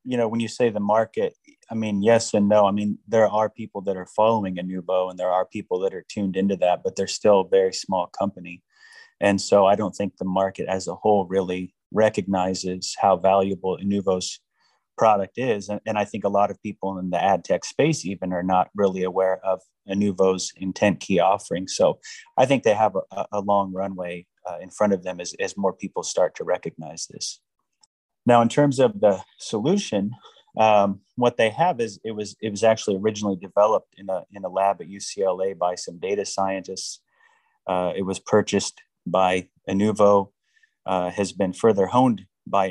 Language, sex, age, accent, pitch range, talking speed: English, male, 30-49, American, 95-115 Hz, 195 wpm